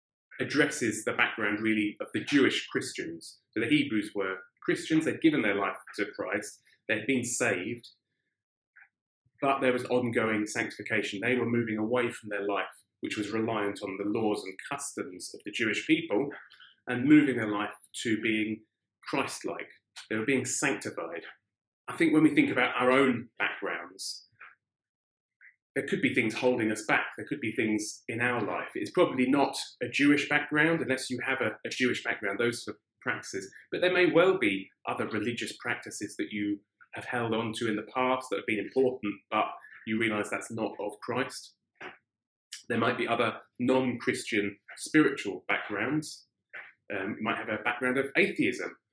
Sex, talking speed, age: male, 170 wpm, 30-49